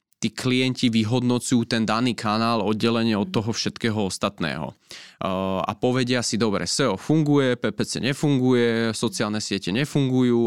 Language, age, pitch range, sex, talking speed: Slovak, 20-39, 100-120 Hz, male, 125 wpm